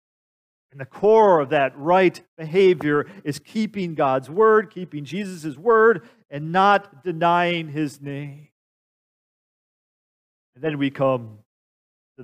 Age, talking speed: 40-59, 120 wpm